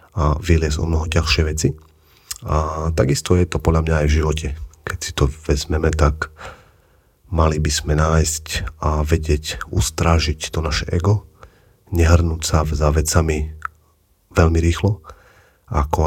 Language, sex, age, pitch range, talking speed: Slovak, male, 40-59, 75-85 Hz, 140 wpm